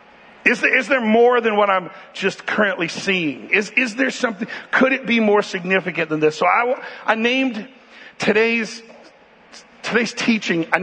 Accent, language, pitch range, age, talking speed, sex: American, English, 175-225 Hz, 50-69, 165 wpm, male